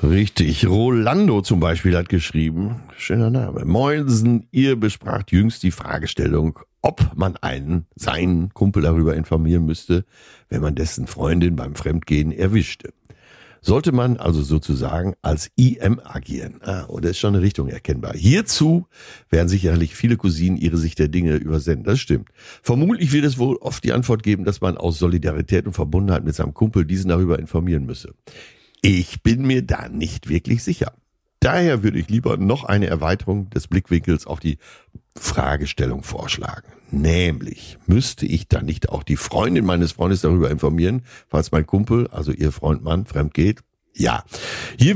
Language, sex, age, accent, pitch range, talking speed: German, male, 60-79, German, 80-115 Hz, 155 wpm